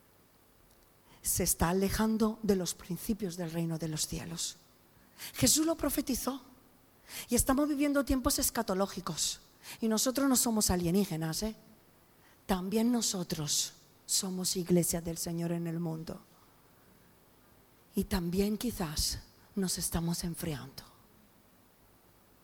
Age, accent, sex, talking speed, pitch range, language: 40-59, Spanish, female, 105 wpm, 175-255 Hz, Spanish